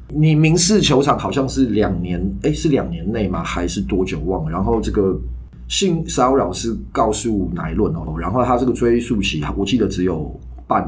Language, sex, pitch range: Chinese, male, 90-135 Hz